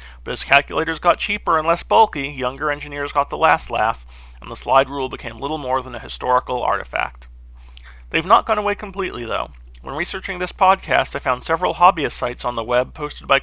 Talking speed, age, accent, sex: 200 wpm, 40-59, American, male